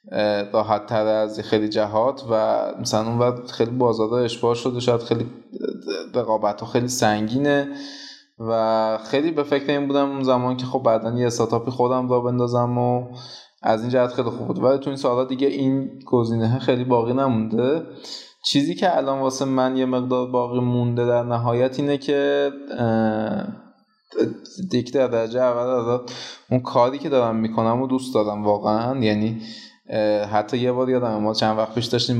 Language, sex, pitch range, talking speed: Persian, male, 115-135 Hz, 155 wpm